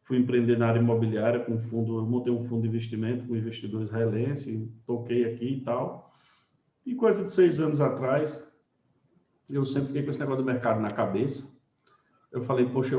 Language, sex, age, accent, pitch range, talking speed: Portuguese, male, 50-69, Brazilian, 115-140 Hz, 180 wpm